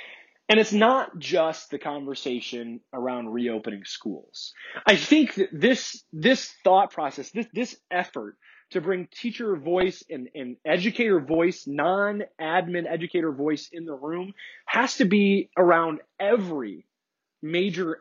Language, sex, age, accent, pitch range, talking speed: English, male, 20-39, American, 145-200 Hz, 130 wpm